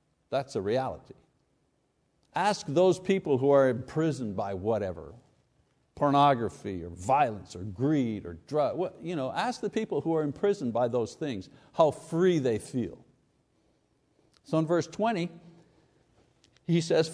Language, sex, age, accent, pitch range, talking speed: English, male, 60-79, American, 125-175 Hz, 130 wpm